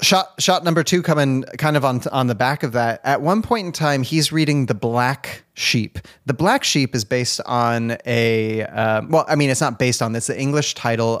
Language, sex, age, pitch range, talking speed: English, male, 30-49, 115-145 Hz, 225 wpm